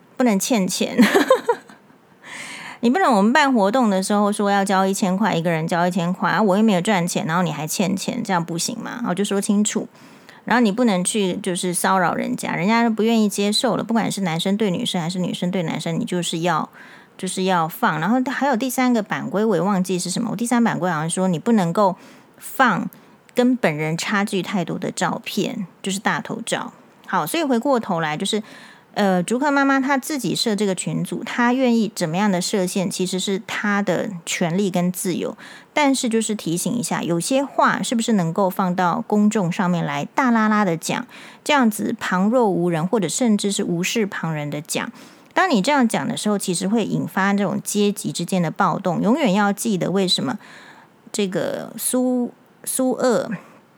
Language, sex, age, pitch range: Chinese, female, 30-49, 185-235 Hz